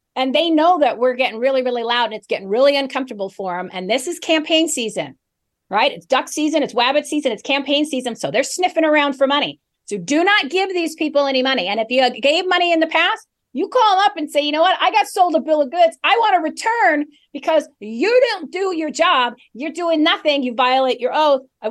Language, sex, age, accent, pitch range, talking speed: English, female, 40-59, American, 240-315 Hz, 240 wpm